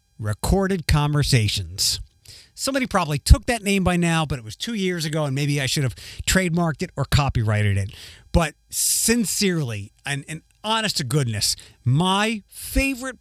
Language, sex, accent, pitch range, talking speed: English, male, American, 130-190 Hz, 155 wpm